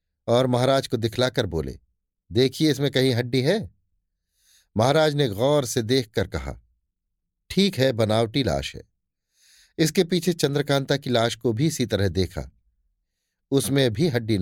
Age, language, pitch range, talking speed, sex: 50-69, Hindi, 95-145 Hz, 145 wpm, male